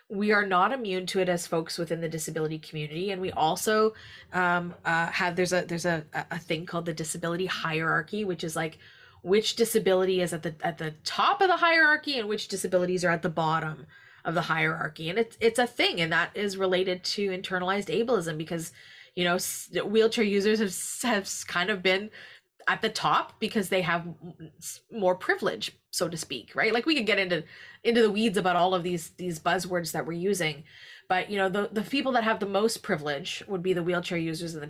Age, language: 20-39, English